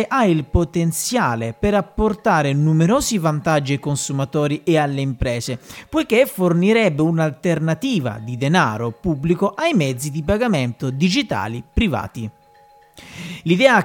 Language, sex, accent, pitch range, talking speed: Italian, male, native, 140-210 Hz, 110 wpm